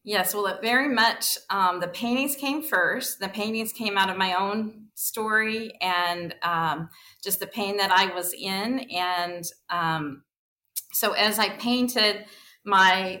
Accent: American